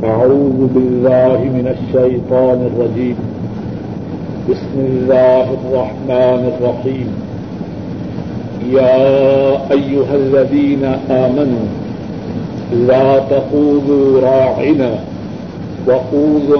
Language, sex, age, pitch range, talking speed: Urdu, male, 60-79, 130-145 Hz, 60 wpm